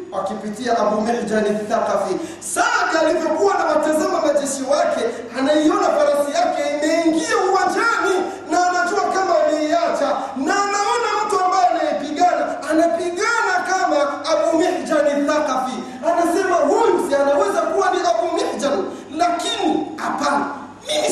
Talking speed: 115 wpm